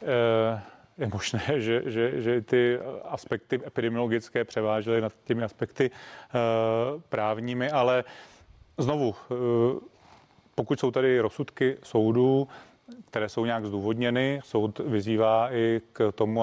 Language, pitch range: Czech, 110-130 Hz